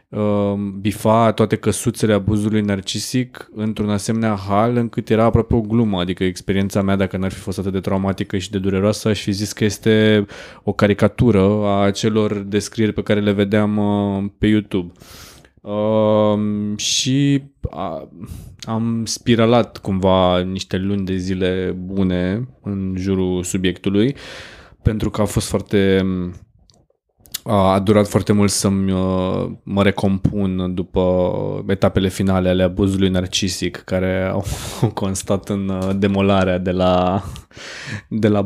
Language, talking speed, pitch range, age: Romanian, 125 wpm, 95-110 Hz, 20-39